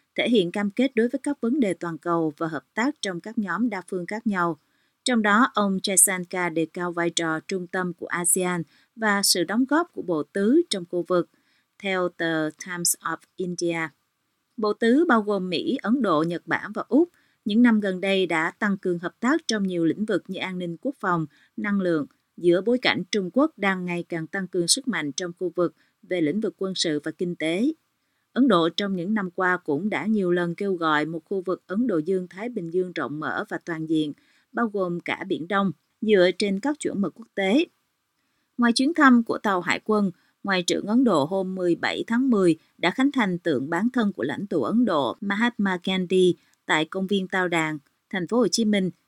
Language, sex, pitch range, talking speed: Vietnamese, female, 170-220 Hz, 220 wpm